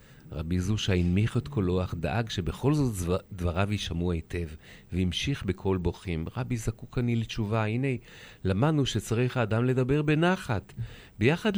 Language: Hebrew